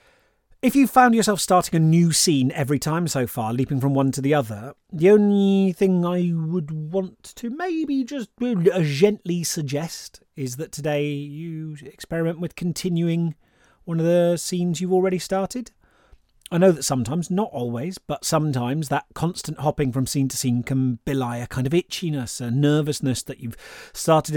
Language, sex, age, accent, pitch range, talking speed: English, male, 30-49, British, 135-175 Hz, 170 wpm